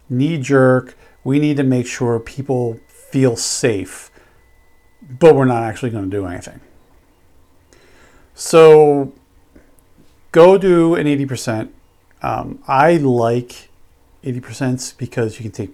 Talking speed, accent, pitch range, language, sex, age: 115 wpm, American, 115-165 Hz, English, male, 50-69